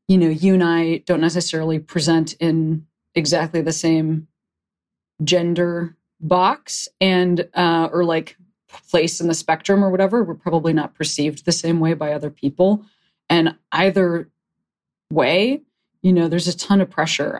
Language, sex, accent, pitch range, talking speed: English, female, American, 155-180 Hz, 150 wpm